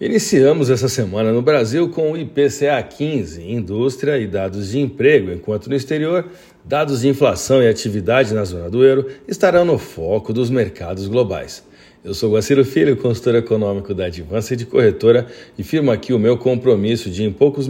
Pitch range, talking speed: 105-135 Hz, 170 wpm